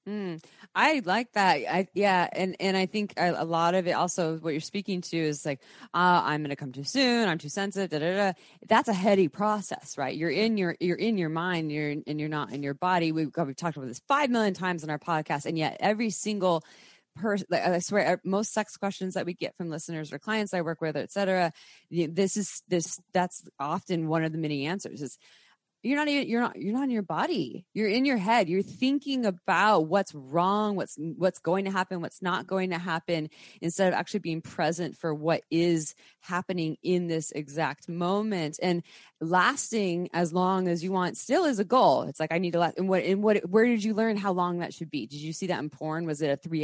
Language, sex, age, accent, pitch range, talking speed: English, female, 20-39, American, 160-200 Hz, 225 wpm